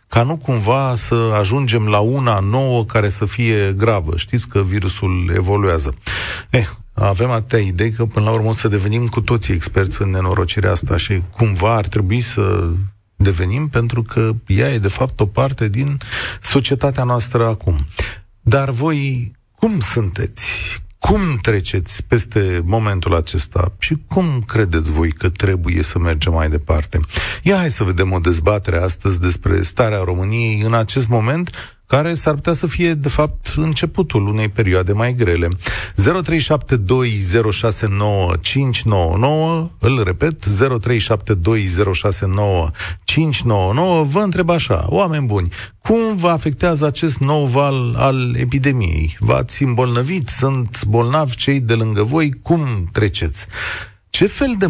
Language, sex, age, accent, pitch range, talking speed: Romanian, male, 30-49, native, 100-135 Hz, 135 wpm